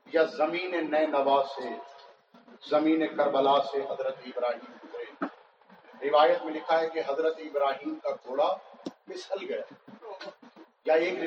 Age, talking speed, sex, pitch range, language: 50-69, 105 wpm, male, 155-210 Hz, Urdu